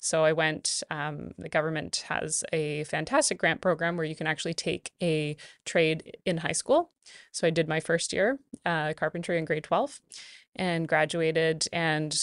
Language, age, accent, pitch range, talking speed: English, 20-39, American, 155-180 Hz, 170 wpm